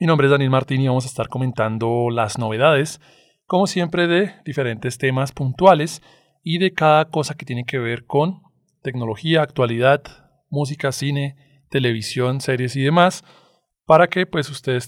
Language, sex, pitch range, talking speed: Spanish, male, 125-160 Hz, 155 wpm